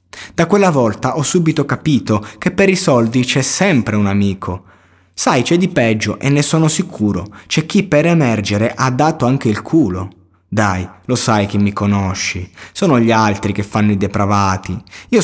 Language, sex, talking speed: Italian, male, 175 wpm